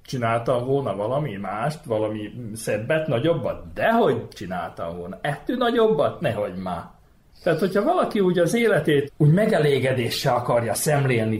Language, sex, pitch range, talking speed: Hungarian, male, 120-170 Hz, 130 wpm